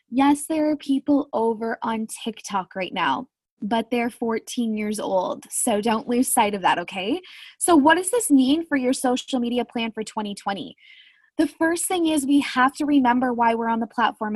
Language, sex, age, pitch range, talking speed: English, female, 20-39, 210-270 Hz, 190 wpm